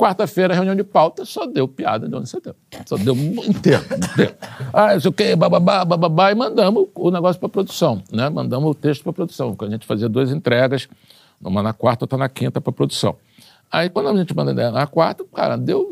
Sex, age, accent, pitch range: male, 60-79, Brazilian, 125-205 Hz